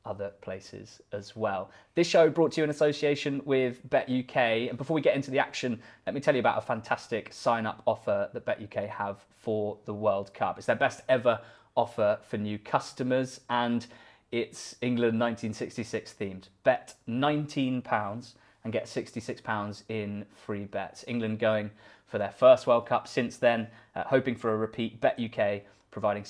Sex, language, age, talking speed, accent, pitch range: male, English, 20-39, 180 wpm, British, 105-130 Hz